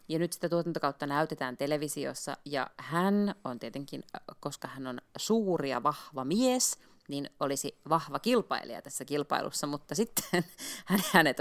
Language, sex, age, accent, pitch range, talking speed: Finnish, female, 30-49, native, 140-180 Hz, 135 wpm